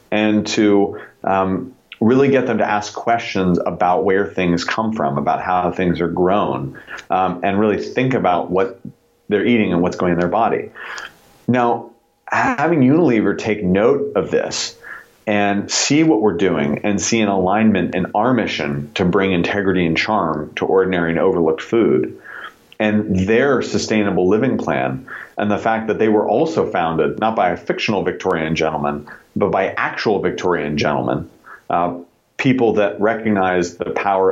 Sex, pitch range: male, 90-110 Hz